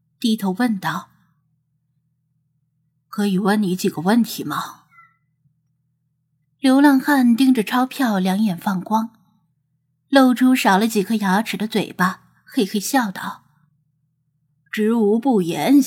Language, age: Chinese, 20-39